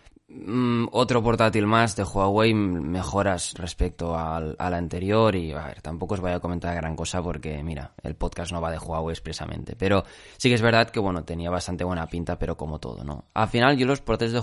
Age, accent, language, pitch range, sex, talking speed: 20-39, Spanish, Spanish, 90-110 Hz, male, 215 wpm